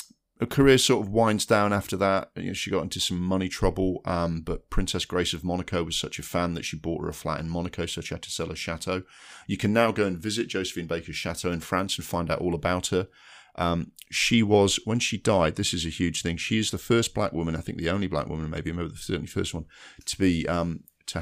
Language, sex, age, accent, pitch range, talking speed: English, male, 40-59, British, 80-95 Hz, 255 wpm